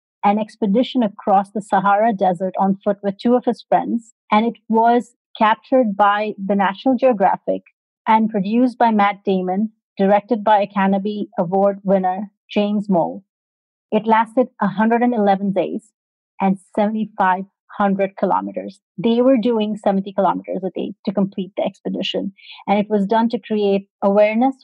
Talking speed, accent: 145 wpm, Indian